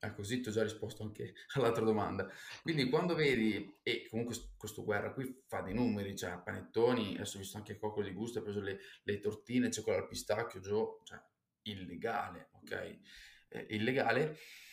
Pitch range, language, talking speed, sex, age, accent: 105-135 Hz, Italian, 180 wpm, male, 20-39, native